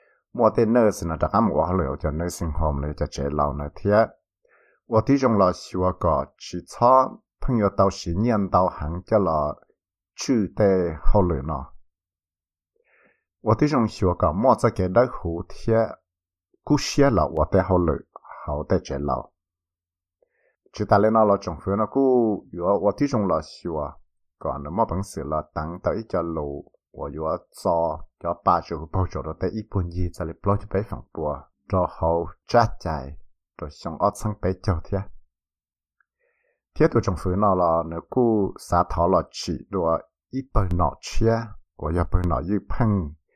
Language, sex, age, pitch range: English, male, 60-79, 80-100 Hz